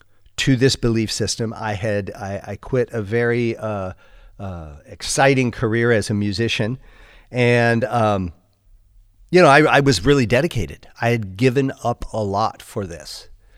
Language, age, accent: English, 50-69, American